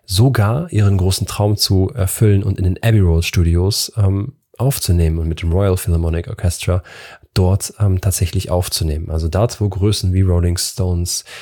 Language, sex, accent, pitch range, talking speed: German, male, German, 90-110 Hz, 160 wpm